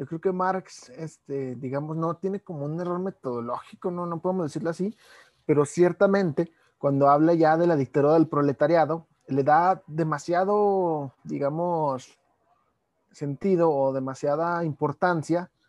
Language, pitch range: Spanish, 140-170 Hz